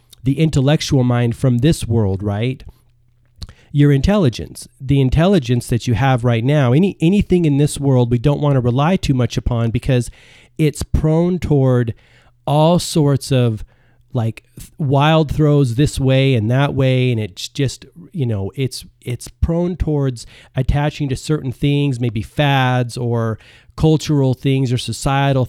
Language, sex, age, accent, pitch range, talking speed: English, male, 40-59, American, 120-145 Hz, 150 wpm